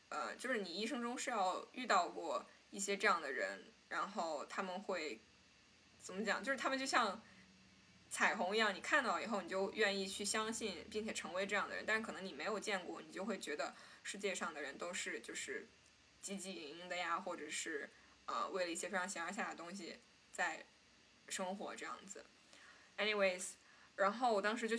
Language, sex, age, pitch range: Chinese, female, 10-29, 190-235 Hz